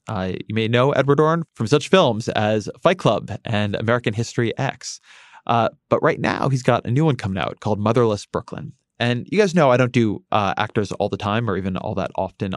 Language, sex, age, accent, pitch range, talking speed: English, male, 20-39, American, 105-140 Hz, 225 wpm